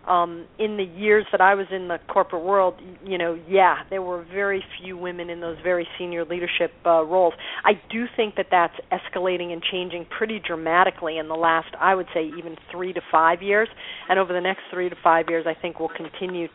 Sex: female